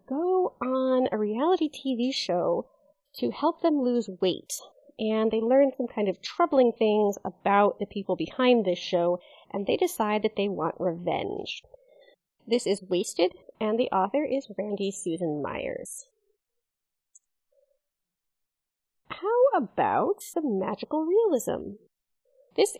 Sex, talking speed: female, 125 wpm